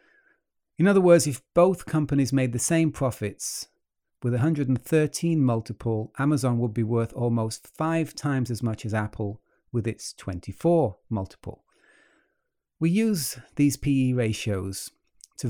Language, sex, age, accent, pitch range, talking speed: English, male, 40-59, British, 110-140 Hz, 130 wpm